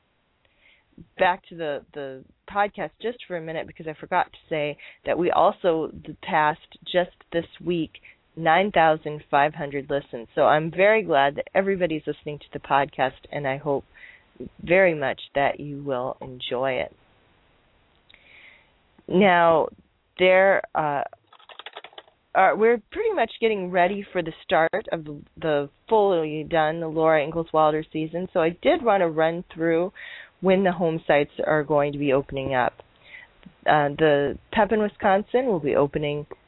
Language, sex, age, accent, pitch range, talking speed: English, female, 30-49, American, 150-185 Hz, 150 wpm